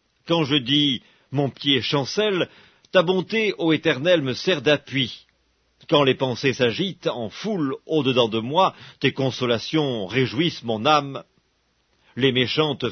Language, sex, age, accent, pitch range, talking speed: English, male, 50-69, French, 125-170 Hz, 145 wpm